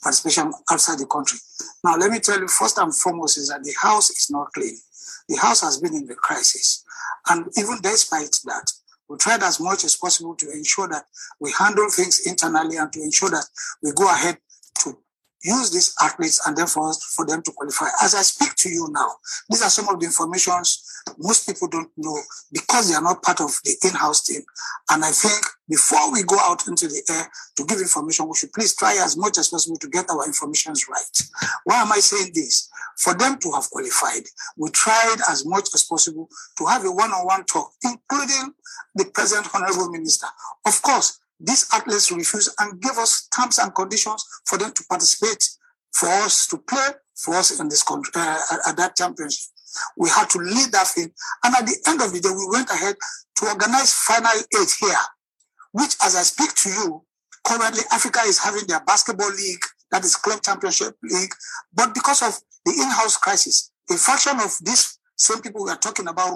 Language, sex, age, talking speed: English, male, 50-69, 200 wpm